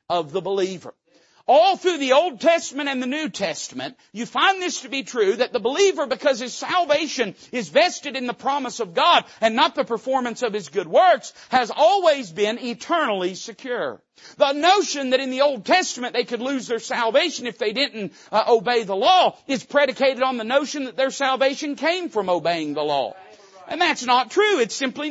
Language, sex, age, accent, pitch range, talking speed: English, male, 50-69, American, 215-285 Hz, 190 wpm